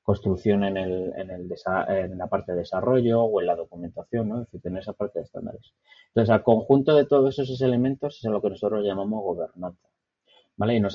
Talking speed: 215 wpm